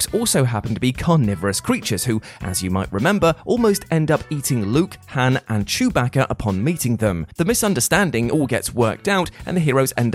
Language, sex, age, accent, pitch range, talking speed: English, male, 20-39, British, 115-160 Hz, 190 wpm